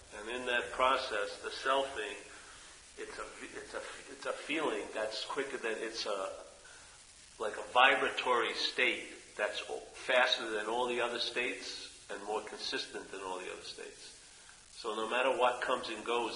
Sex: male